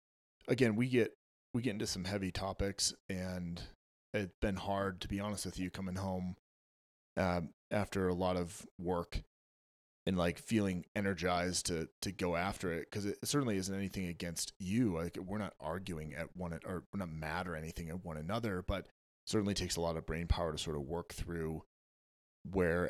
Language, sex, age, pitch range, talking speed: English, male, 30-49, 80-95 Hz, 190 wpm